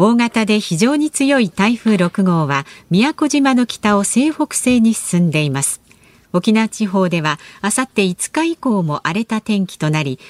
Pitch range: 165-235 Hz